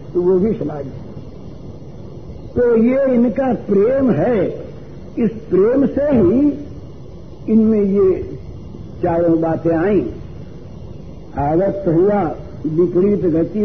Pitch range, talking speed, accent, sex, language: 155-220 Hz, 95 wpm, native, male, Hindi